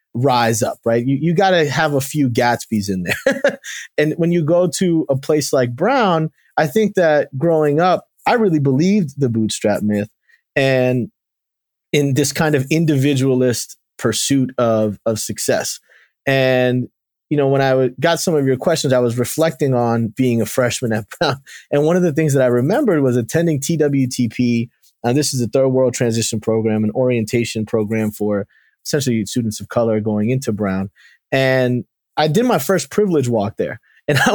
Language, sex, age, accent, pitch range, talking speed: English, male, 20-39, American, 120-155 Hz, 180 wpm